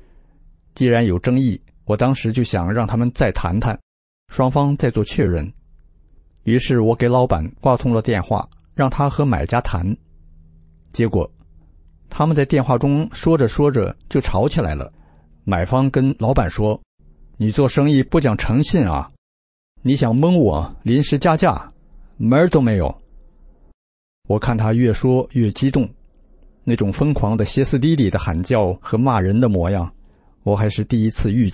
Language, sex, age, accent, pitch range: English, male, 50-69, Chinese, 80-130 Hz